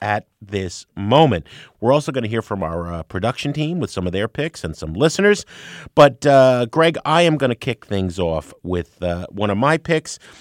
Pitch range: 95-150 Hz